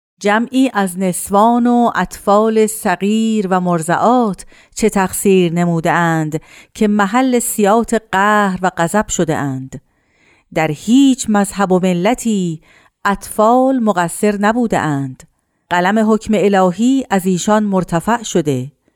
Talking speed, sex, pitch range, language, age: 110 wpm, female, 175-225 Hz, Persian, 50-69